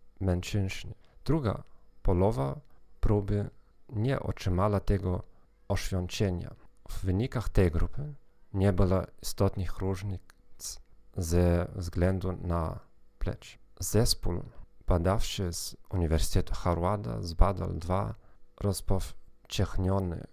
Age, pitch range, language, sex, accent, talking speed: 40-59, 85-100 Hz, Polish, male, native, 80 wpm